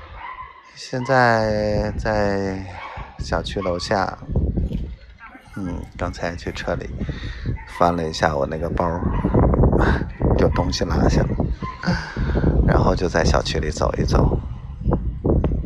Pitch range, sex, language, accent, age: 70-95 Hz, male, Chinese, native, 30-49